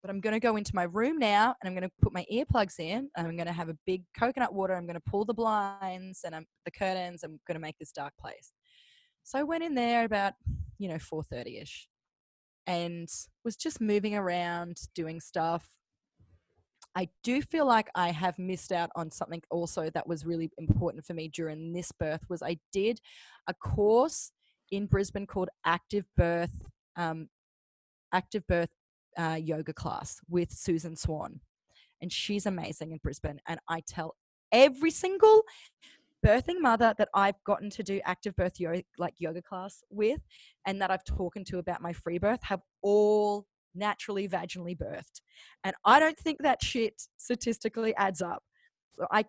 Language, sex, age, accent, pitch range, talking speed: English, female, 20-39, Australian, 170-220 Hz, 180 wpm